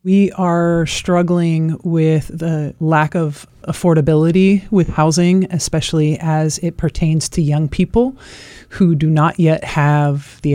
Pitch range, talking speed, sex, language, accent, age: 145-165 Hz, 130 wpm, male, English, American, 30-49